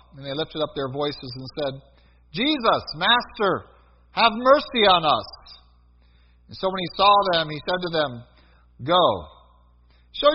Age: 50-69